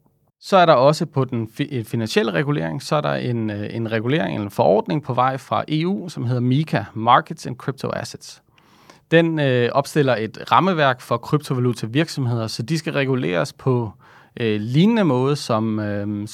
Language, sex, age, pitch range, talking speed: Danish, male, 30-49, 115-150 Hz, 165 wpm